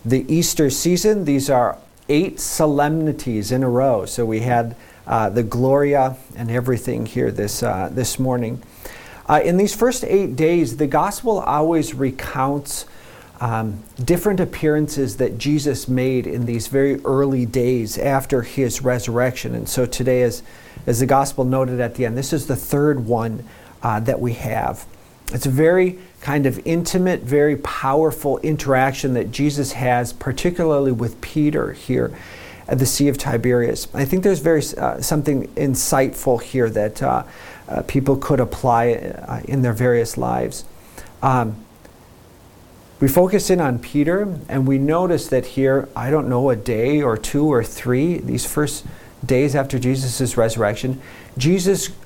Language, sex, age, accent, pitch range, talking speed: English, male, 40-59, American, 120-150 Hz, 155 wpm